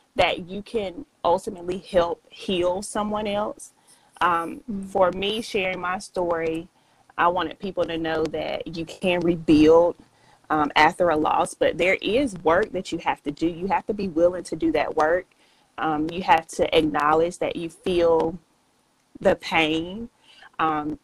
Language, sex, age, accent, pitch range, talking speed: English, female, 30-49, American, 160-185 Hz, 160 wpm